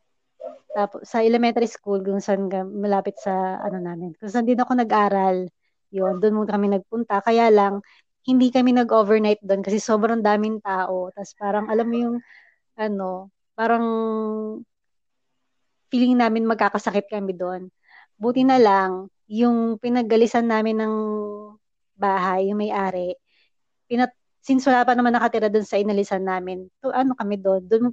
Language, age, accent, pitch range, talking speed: Filipino, 20-39, native, 190-230 Hz, 140 wpm